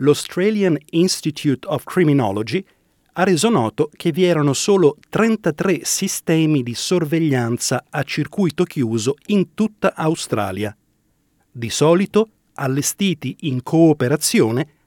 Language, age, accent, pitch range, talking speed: Italian, 40-59, native, 135-180 Hz, 105 wpm